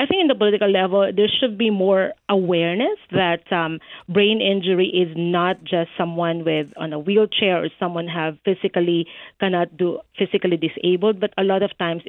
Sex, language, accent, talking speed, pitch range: female, English, Filipino, 180 wpm, 170-200 Hz